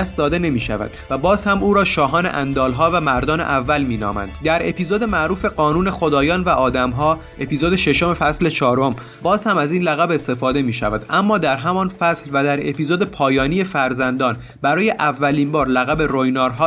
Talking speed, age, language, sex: 175 wpm, 30-49, Persian, male